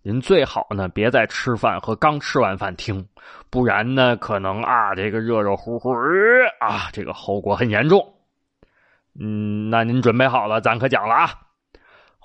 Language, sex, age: Chinese, male, 20-39